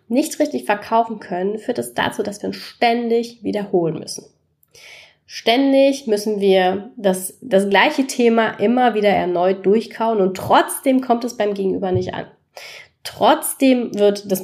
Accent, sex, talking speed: German, female, 150 wpm